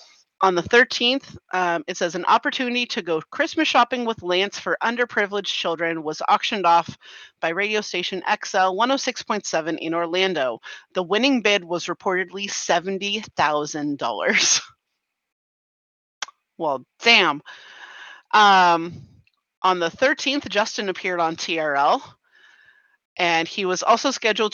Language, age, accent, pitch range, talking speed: English, 30-49, American, 170-230 Hz, 115 wpm